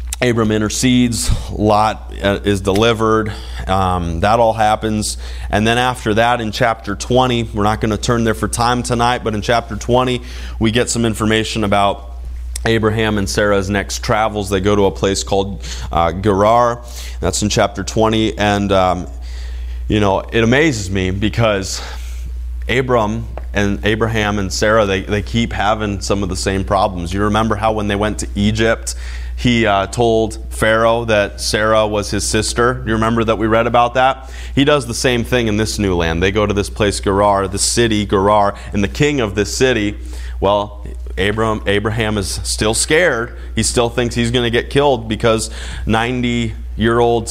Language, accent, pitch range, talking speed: English, American, 95-115 Hz, 175 wpm